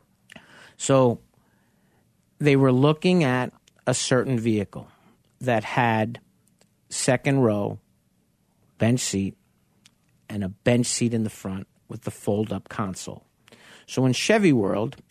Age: 50-69